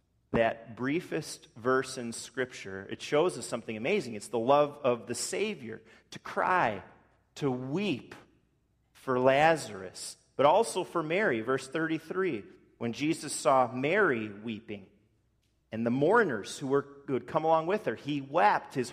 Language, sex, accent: English, male, American